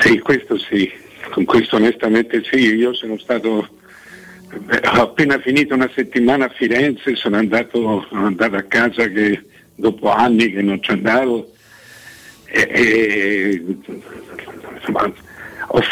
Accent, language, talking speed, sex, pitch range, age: native, Italian, 115 wpm, male, 110-130 Hz, 60-79